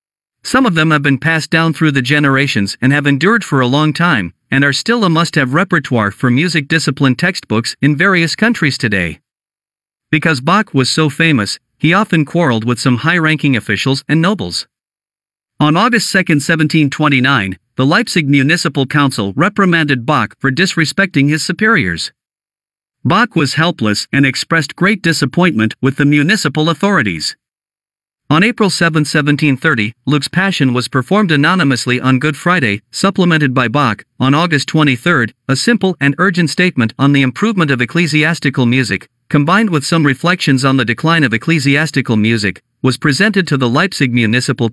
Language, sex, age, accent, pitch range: Chinese, male, 50-69, American, 130-170 Hz